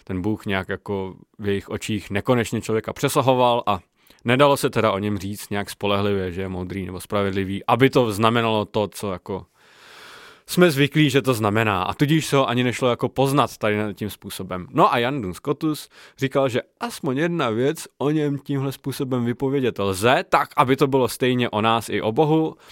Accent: native